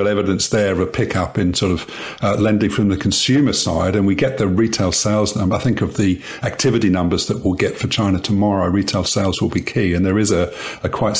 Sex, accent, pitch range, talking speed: male, British, 95-105 Hz, 235 wpm